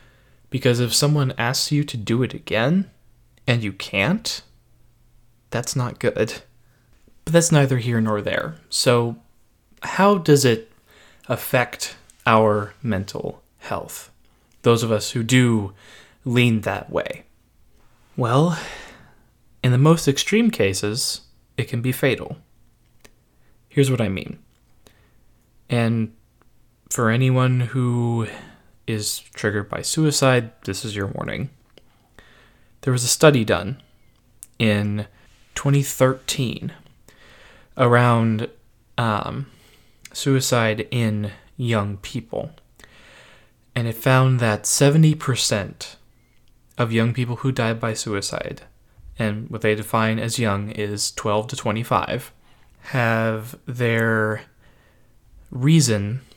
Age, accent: 20-39, American